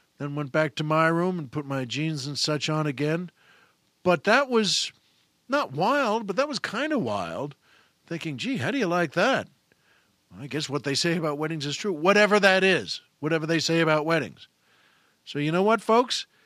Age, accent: 50-69, American